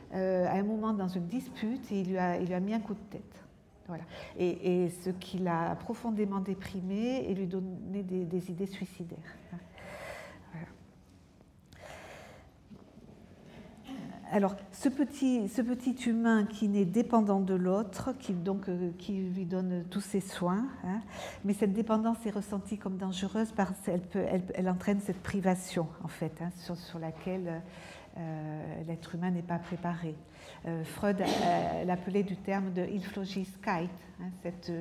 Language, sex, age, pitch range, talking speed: French, female, 50-69, 180-220 Hz, 160 wpm